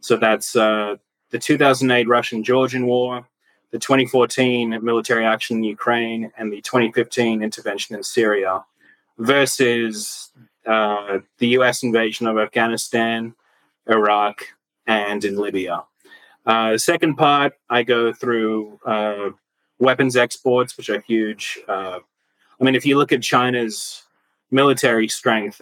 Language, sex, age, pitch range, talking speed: English, male, 30-49, 105-125 Hz, 125 wpm